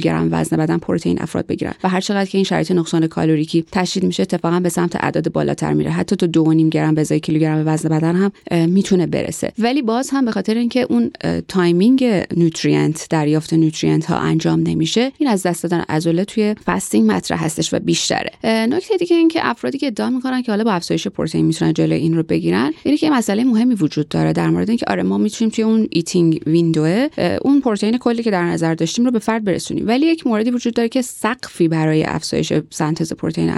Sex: female